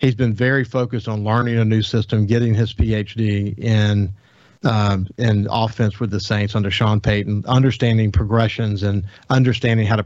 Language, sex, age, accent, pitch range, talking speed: English, male, 50-69, American, 110-145 Hz, 165 wpm